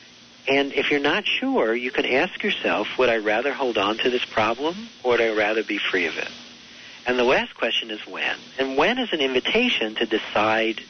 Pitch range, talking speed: 115-180 Hz, 210 wpm